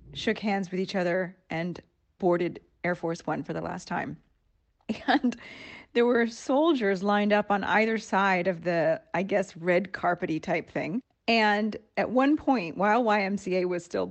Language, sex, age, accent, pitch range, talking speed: English, female, 30-49, American, 190-255 Hz, 165 wpm